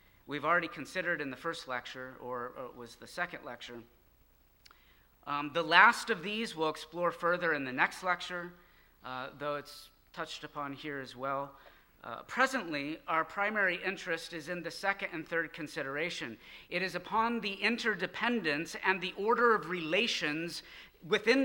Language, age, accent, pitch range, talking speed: English, 40-59, American, 125-175 Hz, 155 wpm